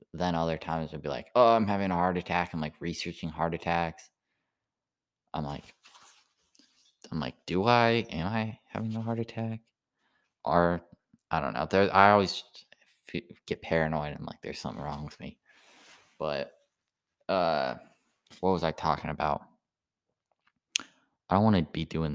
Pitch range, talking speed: 80-105 Hz, 155 wpm